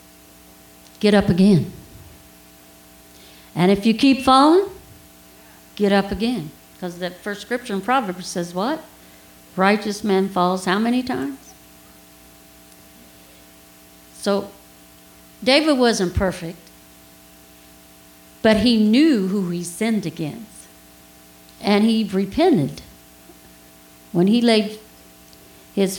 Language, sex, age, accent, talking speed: English, female, 60-79, American, 100 wpm